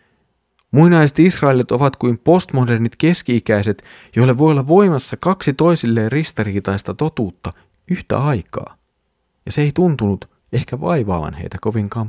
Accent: native